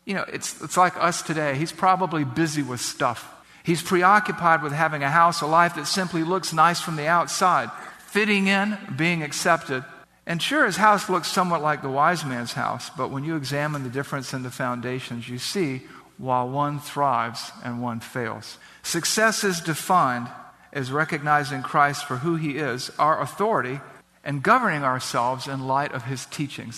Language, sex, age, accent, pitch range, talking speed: English, male, 50-69, American, 135-170 Hz, 175 wpm